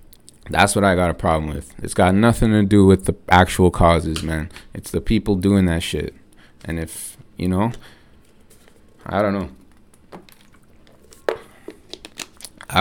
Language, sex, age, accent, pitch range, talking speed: English, male, 20-39, American, 90-105 Hz, 140 wpm